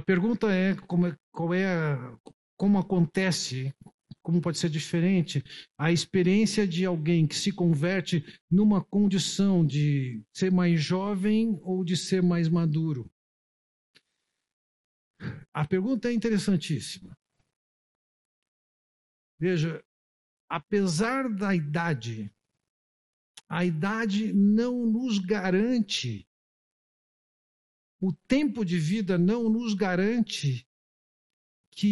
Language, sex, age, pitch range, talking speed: Portuguese, male, 60-79, 160-210 Hz, 90 wpm